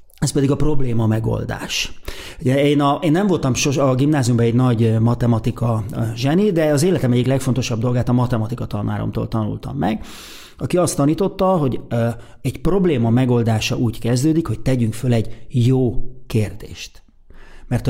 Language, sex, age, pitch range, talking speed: Hungarian, male, 30-49, 115-135 Hz, 150 wpm